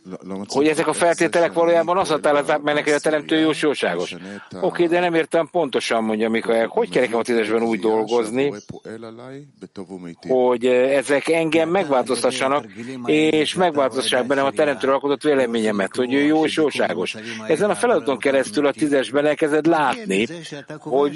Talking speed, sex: 135 wpm, male